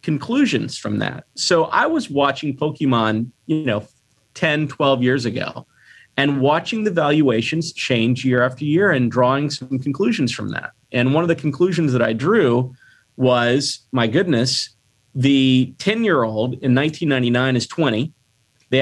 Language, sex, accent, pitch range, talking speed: English, male, American, 120-150 Hz, 155 wpm